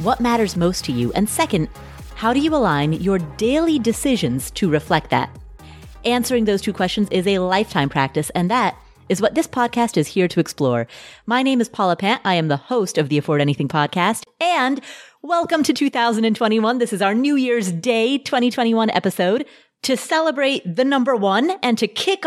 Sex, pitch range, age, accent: female, 180-265 Hz, 30-49, American